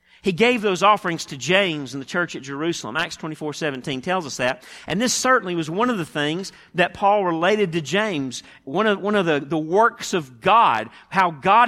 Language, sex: English, male